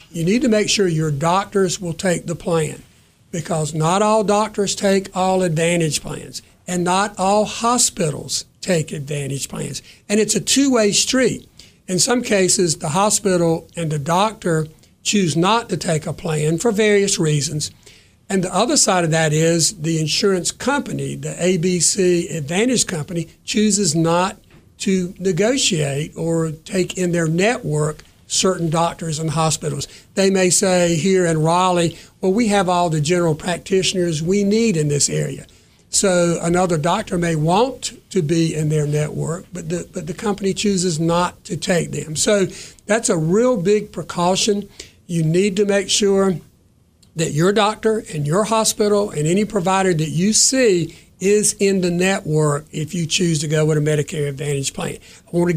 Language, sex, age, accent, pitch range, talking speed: English, male, 60-79, American, 160-200 Hz, 165 wpm